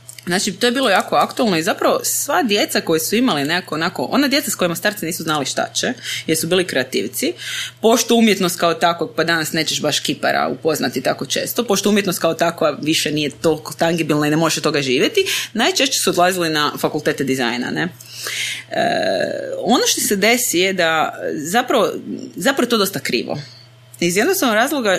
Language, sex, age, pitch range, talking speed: Croatian, female, 20-39, 155-225 Hz, 185 wpm